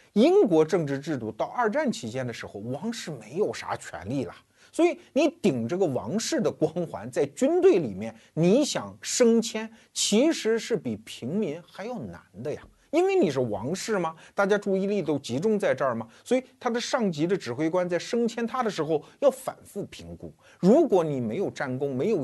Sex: male